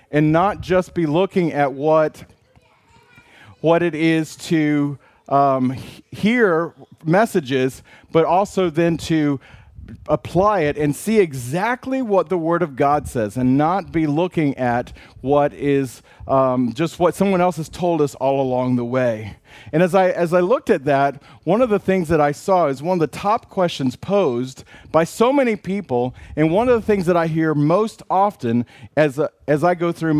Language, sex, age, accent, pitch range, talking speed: English, male, 40-59, American, 135-190 Hz, 180 wpm